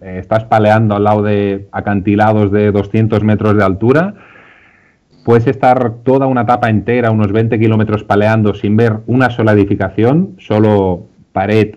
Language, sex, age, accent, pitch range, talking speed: Spanish, male, 30-49, Spanish, 100-120 Hz, 150 wpm